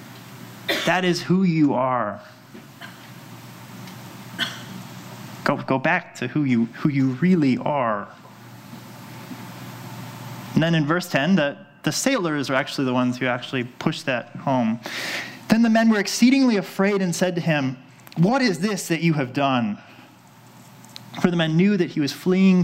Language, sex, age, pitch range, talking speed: English, male, 30-49, 130-185 Hz, 150 wpm